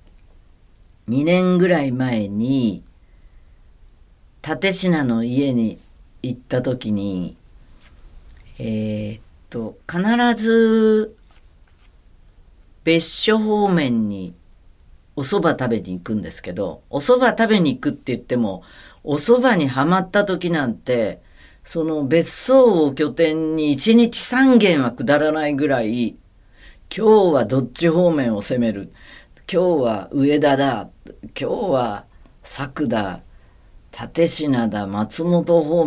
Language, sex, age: Japanese, female, 50-69